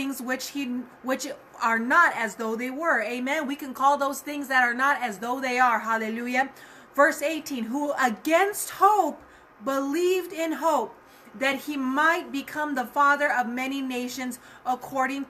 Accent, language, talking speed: American, English, 160 wpm